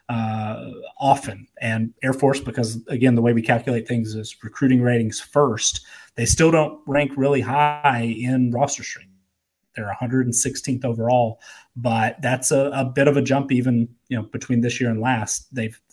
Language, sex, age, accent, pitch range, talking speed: English, male, 30-49, American, 120-140 Hz, 170 wpm